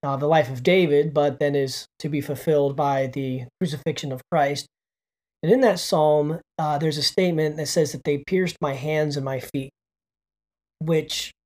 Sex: male